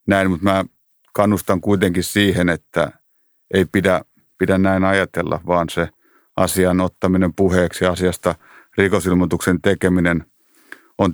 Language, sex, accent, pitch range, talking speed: Finnish, male, native, 90-95 Hz, 115 wpm